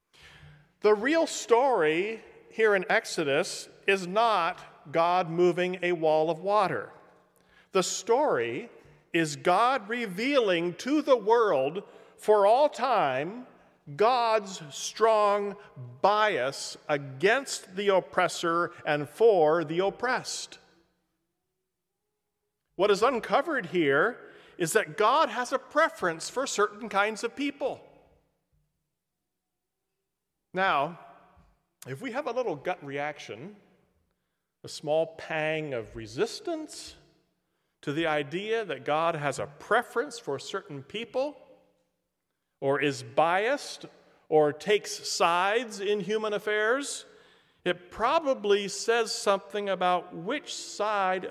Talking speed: 105 wpm